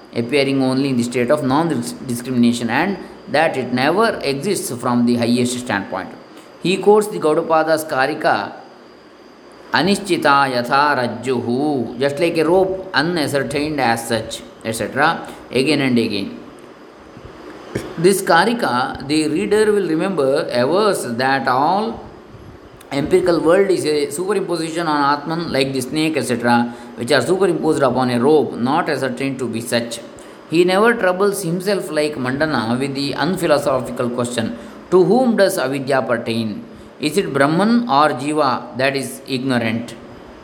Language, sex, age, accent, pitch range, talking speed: English, male, 20-39, Indian, 125-180 Hz, 130 wpm